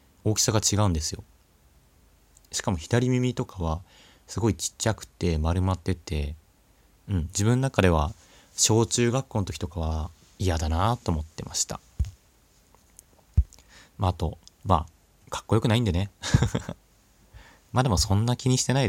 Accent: native